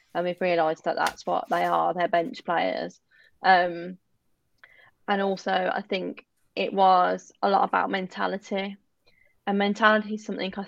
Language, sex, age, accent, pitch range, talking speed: English, female, 20-39, British, 170-200 Hz, 150 wpm